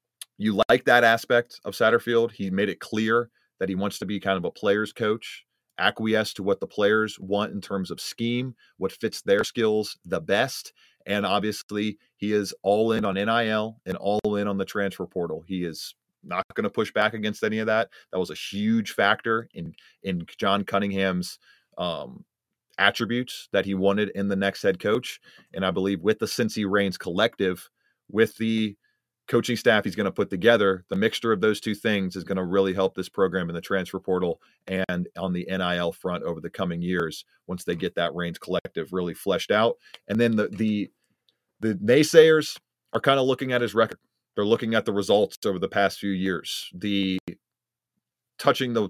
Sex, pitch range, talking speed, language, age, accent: male, 95-110 Hz, 195 wpm, English, 30-49, American